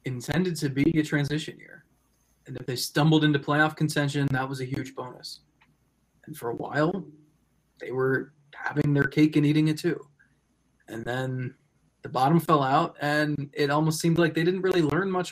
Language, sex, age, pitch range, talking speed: English, male, 20-39, 140-170 Hz, 185 wpm